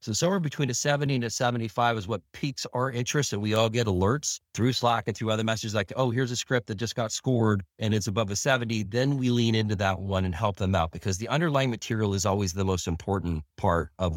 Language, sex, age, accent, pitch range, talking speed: English, male, 40-59, American, 95-120 Hz, 250 wpm